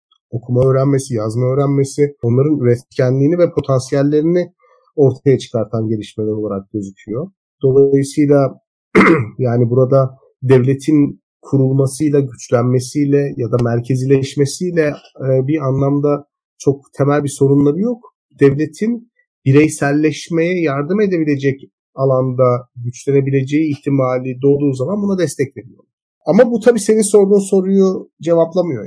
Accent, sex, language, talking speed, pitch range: native, male, Turkish, 100 wpm, 130-155 Hz